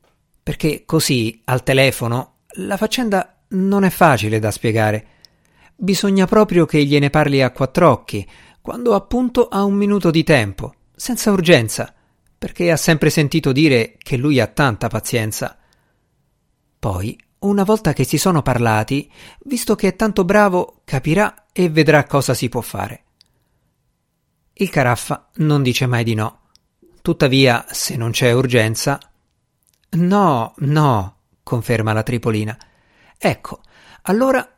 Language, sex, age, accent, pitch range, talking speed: Italian, male, 50-69, native, 120-190 Hz, 130 wpm